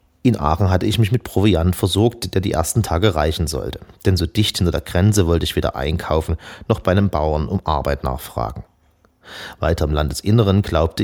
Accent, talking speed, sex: German, 190 wpm, male